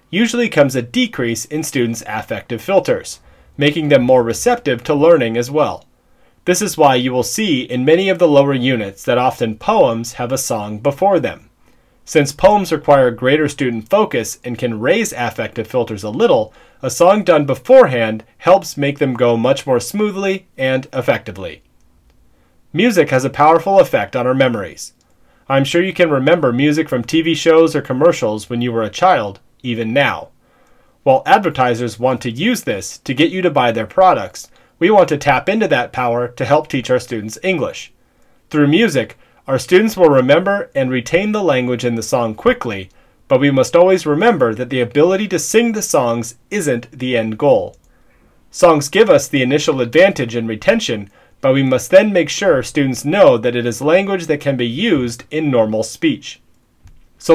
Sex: male